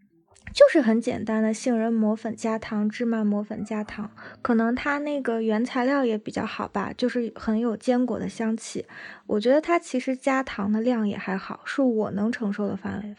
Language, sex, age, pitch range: Chinese, female, 20-39, 210-255 Hz